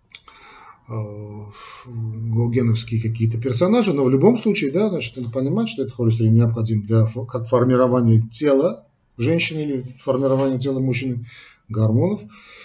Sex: male